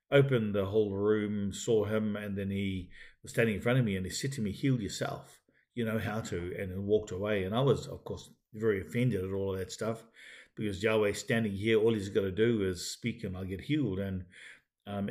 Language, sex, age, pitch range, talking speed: English, male, 50-69, 100-115 Hz, 235 wpm